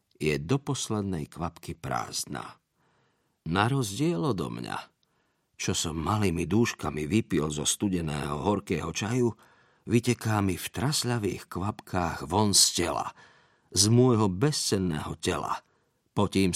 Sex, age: male, 50-69